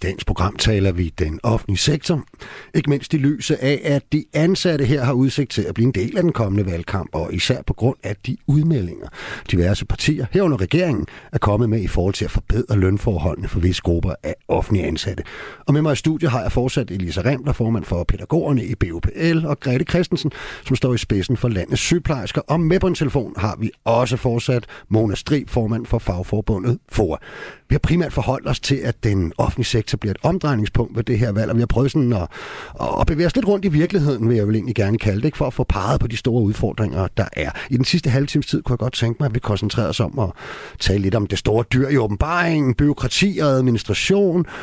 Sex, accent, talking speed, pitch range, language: male, native, 225 wpm, 105-145 Hz, Danish